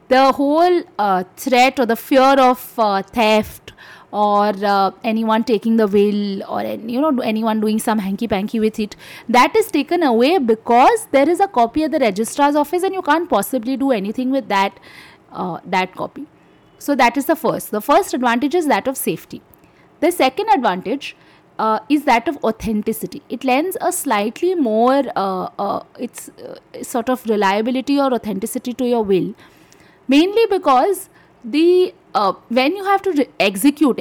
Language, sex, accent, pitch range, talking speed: English, female, Indian, 220-300 Hz, 175 wpm